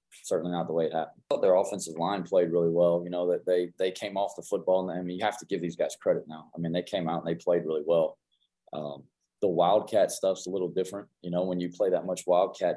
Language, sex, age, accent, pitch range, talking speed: English, male, 20-39, American, 85-95 Hz, 270 wpm